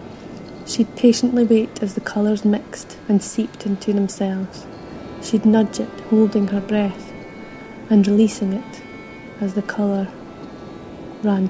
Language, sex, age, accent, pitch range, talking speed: English, female, 30-49, British, 205-225 Hz, 125 wpm